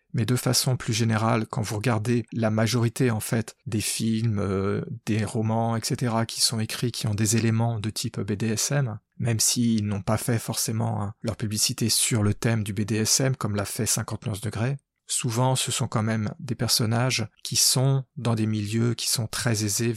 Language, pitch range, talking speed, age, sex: French, 110-125 Hz, 190 wpm, 40-59, male